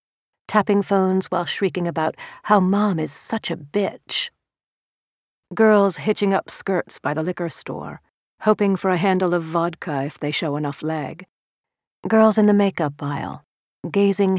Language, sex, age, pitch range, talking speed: English, female, 40-59, 145-195 Hz, 150 wpm